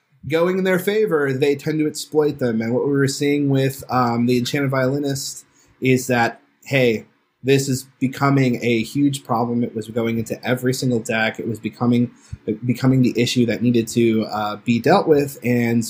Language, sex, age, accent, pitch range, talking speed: English, male, 20-39, American, 115-135 Hz, 185 wpm